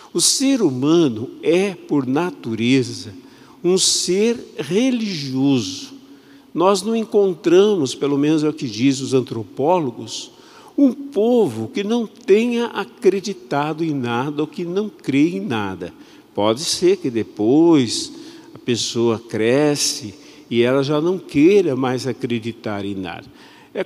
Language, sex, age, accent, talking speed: Portuguese, male, 50-69, Brazilian, 130 wpm